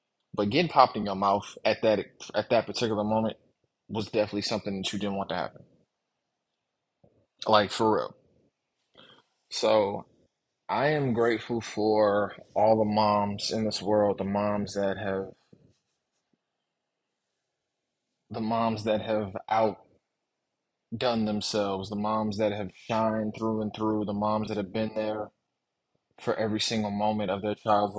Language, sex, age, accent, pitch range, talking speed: English, male, 20-39, American, 100-110 Hz, 140 wpm